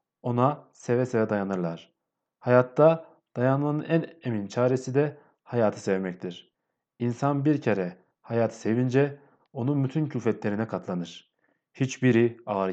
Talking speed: 110 wpm